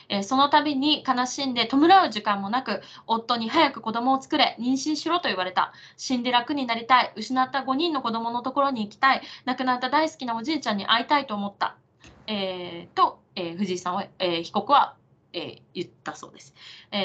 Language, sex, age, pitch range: Japanese, female, 20-39, 205-285 Hz